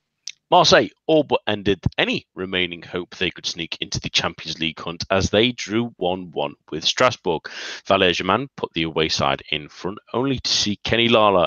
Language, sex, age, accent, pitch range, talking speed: English, male, 30-49, British, 85-125 Hz, 175 wpm